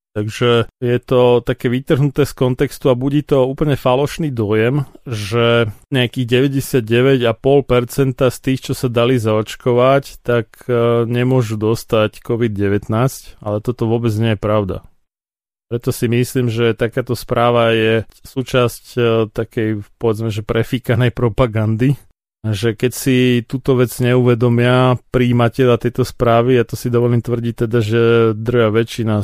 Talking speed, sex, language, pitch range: 130 wpm, male, Slovak, 110-125 Hz